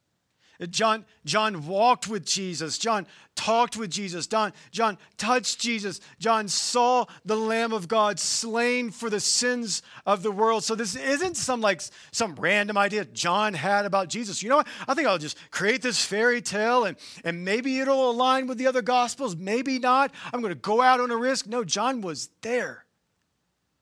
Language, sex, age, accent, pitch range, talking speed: English, male, 40-59, American, 155-230 Hz, 180 wpm